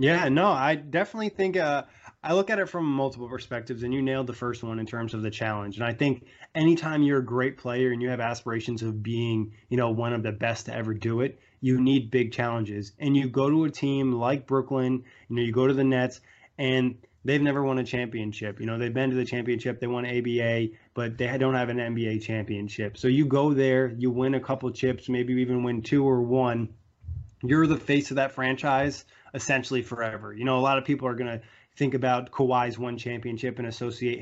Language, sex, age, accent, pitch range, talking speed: English, male, 20-39, American, 120-135 Hz, 225 wpm